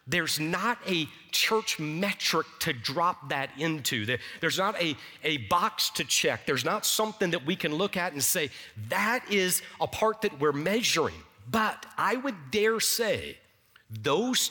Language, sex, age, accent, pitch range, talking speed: English, male, 50-69, American, 120-190 Hz, 160 wpm